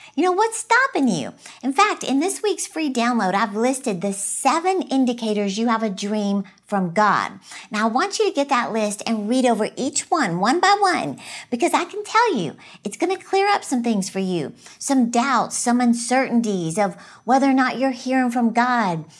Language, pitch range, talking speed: English, 210-295 Hz, 200 wpm